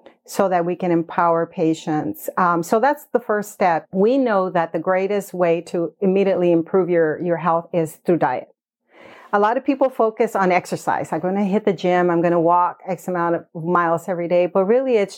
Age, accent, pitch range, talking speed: 40-59, American, 170-205 Hz, 210 wpm